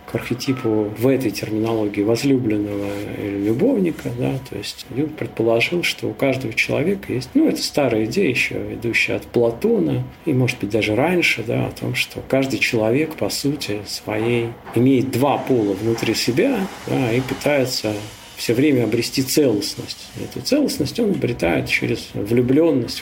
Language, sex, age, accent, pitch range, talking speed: Russian, male, 40-59, native, 110-135 Hz, 150 wpm